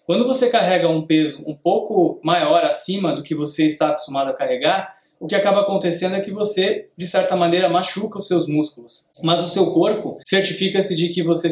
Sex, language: male, Portuguese